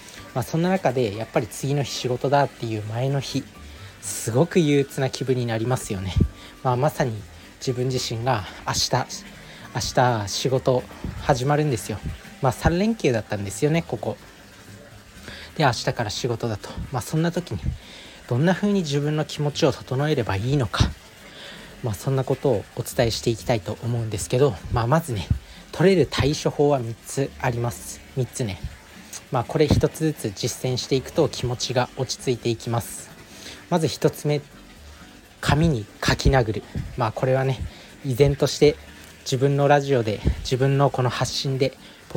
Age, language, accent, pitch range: 40-59, Japanese, native, 110-145 Hz